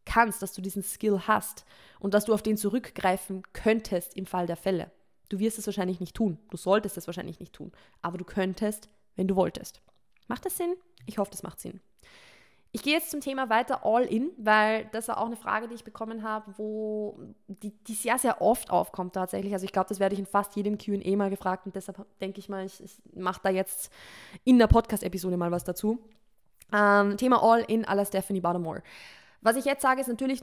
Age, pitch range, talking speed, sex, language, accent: 20-39, 195-230 Hz, 215 wpm, female, German, German